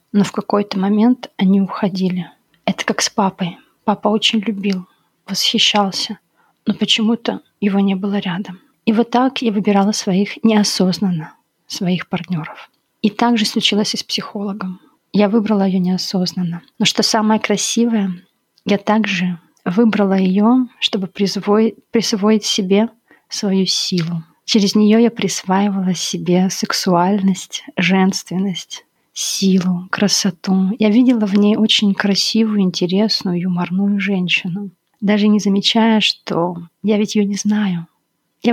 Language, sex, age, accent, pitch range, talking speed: Russian, female, 20-39, native, 185-220 Hz, 130 wpm